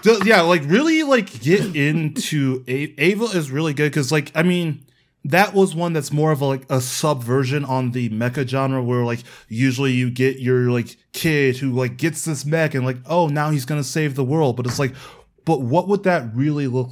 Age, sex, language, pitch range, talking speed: 20-39, male, English, 125-160 Hz, 210 wpm